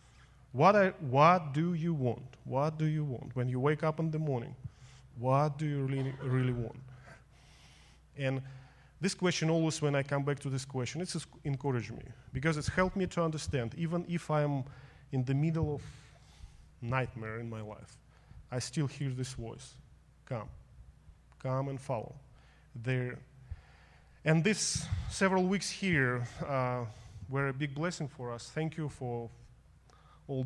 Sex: male